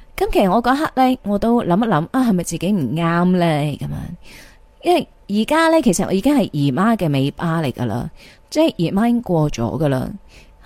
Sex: female